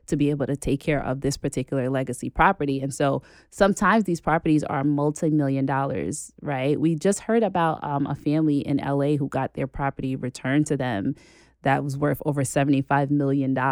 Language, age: English, 20-39